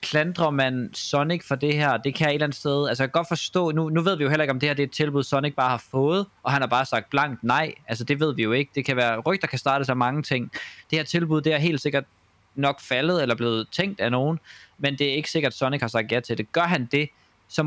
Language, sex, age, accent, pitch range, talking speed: Danish, male, 20-39, native, 125-160 Hz, 290 wpm